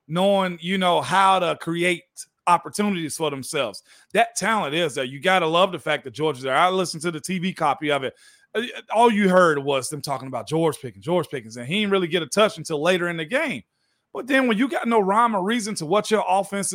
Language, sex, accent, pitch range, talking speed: English, male, American, 170-230 Hz, 240 wpm